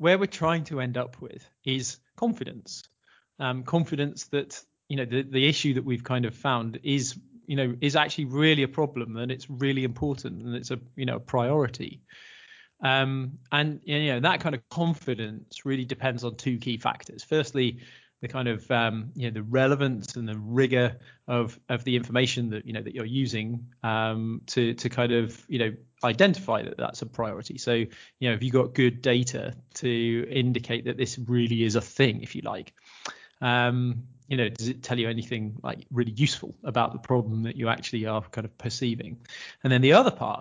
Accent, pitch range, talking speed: British, 120-140 Hz, 200 wpm